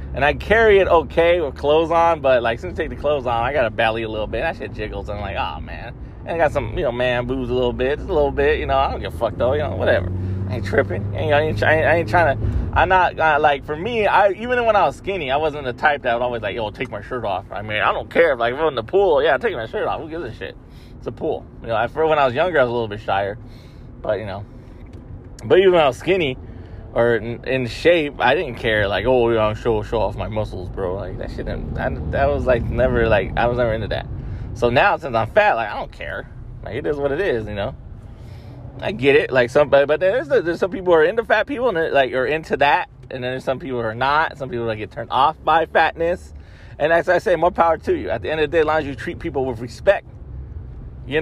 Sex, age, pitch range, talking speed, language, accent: male, 20-39, 110-150 Hz, 290 wpm, English, American